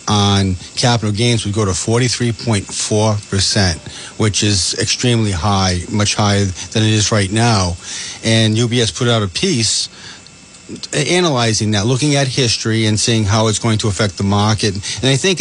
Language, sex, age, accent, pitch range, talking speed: English, male, 40-59, American, 105-120 Hz, 160 wpm